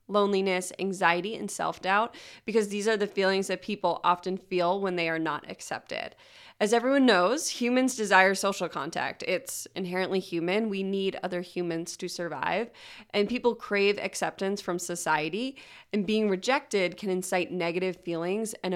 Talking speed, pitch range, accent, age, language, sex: 155 wpm, 180-210 Hz, American, 20-39, English, female